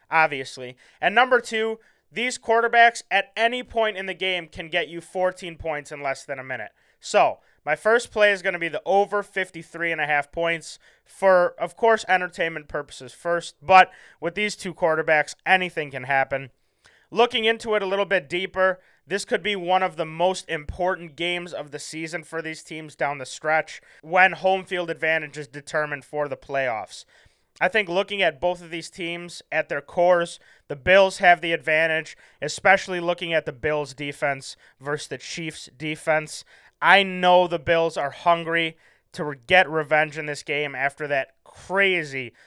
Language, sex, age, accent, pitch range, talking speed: English, male, 20-39, American, 150-185 Hz, 180 wpm